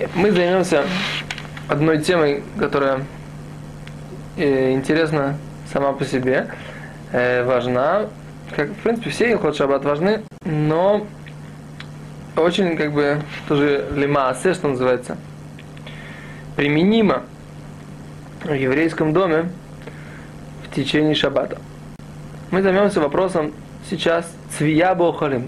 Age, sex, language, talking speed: 20-39, male, Russian, 85 wpm